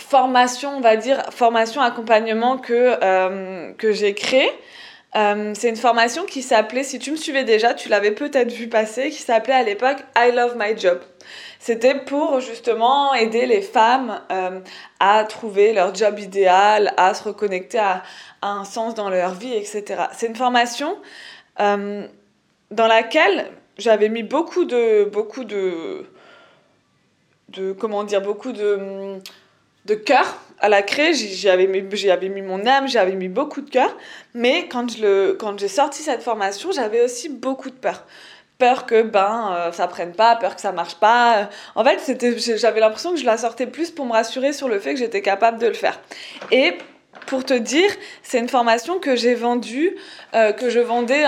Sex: female